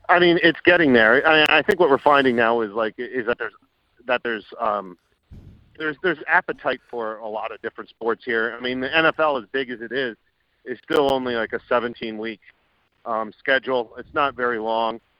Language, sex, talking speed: English, male, 210 wpm